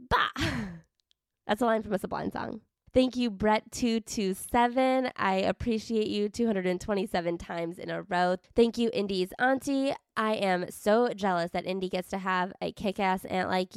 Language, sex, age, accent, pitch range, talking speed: English, female, 20-39, American, 185-235 Hz, 160 wpm